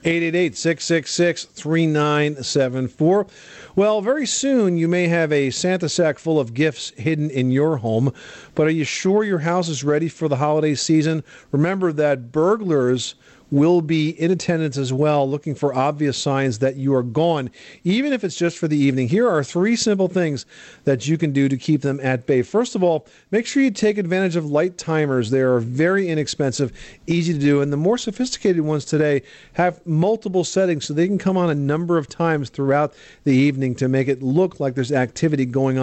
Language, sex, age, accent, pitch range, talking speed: English, male, 40-59, American, 135-170 Hz, 190 wpm